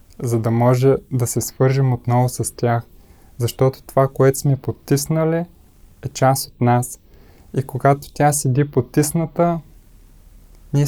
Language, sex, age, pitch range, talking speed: Bulgarian, male, 20-39, 120-140 Hz, 130 wpm